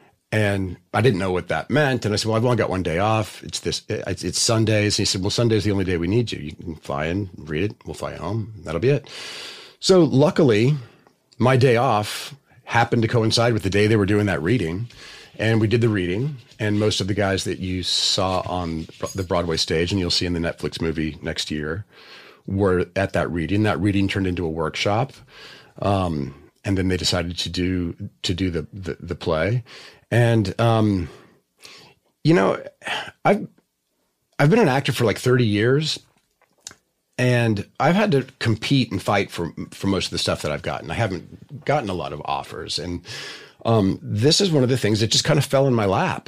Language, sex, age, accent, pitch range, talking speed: English, male, 40-59, American, 90-115 Hz, 210 wpm